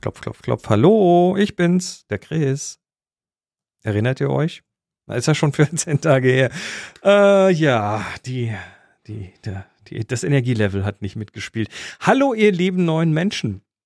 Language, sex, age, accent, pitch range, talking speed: German, male, 40-59, German, 110-180 Hz, 145 wpm